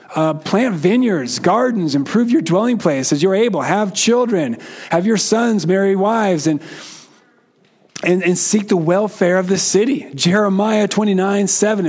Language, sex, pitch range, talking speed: English, male, 165-210 Hz, 145 wpm